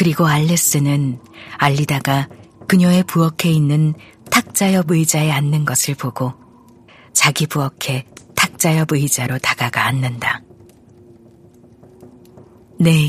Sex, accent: female, native